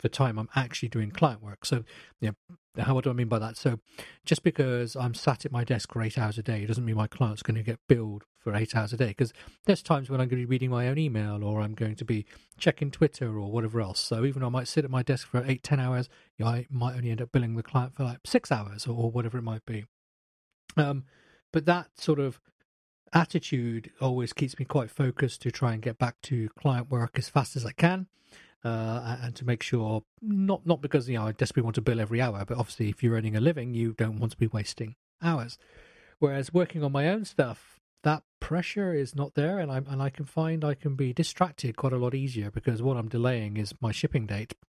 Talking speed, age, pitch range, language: 250 wpm, 40-59, 115-145 Hz, English